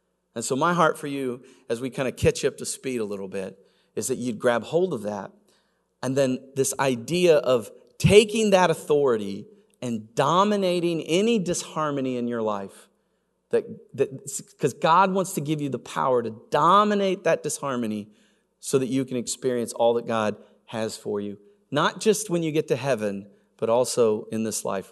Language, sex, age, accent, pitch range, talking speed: English, male, 40-59, American, 140-195 Hz, 185 wpm